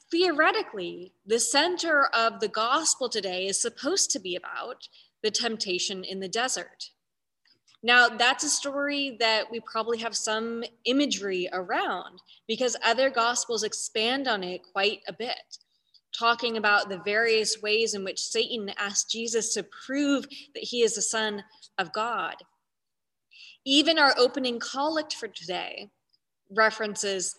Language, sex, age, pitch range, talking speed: English, female, 20-39, 205-265 Hz, 140 wpm